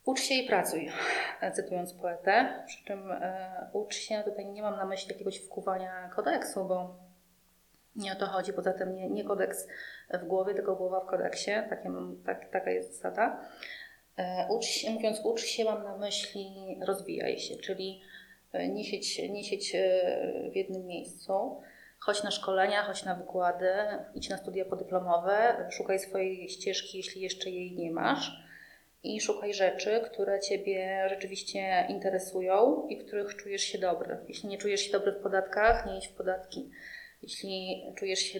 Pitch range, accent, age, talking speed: 185-210 Hz, native, 30-49, 145 wpm